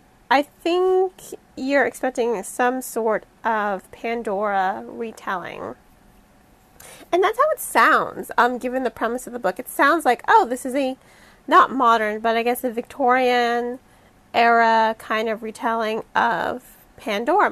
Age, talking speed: 30-49, 140 wpm